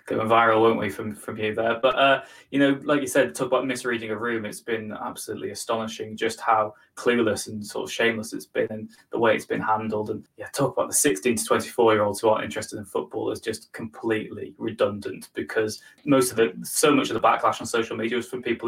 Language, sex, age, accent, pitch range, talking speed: English, male, 20-39, British, 110-130 Hz, 240 wpm